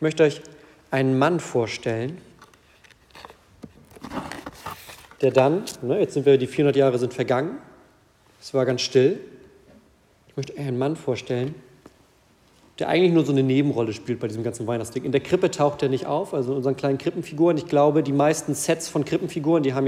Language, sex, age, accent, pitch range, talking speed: German, male, 40-59, German, 130-155 Hz, 175 wpm